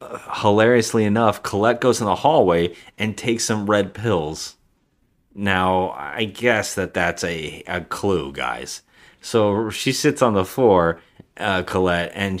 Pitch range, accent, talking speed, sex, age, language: 90-110 Hz, American, 150 wpm, male, 30-49, English